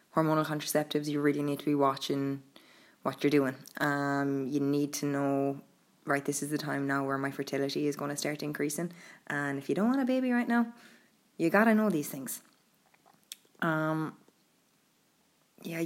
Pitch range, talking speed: 140-160 Hz, 170 wpm